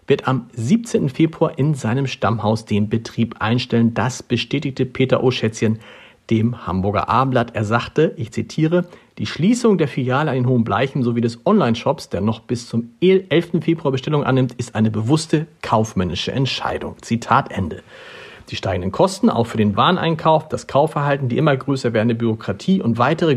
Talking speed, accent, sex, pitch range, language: 165 wpm, German, male, 115-160 Hz, German